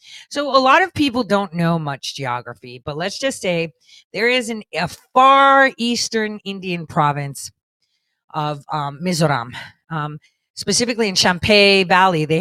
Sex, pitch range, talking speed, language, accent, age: female, 150-205 Hz, 145 wpm, English, American, 40-59